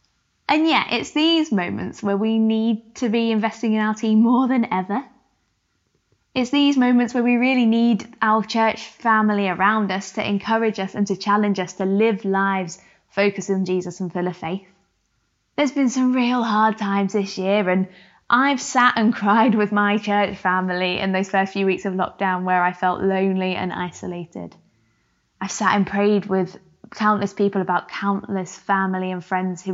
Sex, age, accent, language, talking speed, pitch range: female, 20-39, British, English, 180 wpm, 185-225 Hz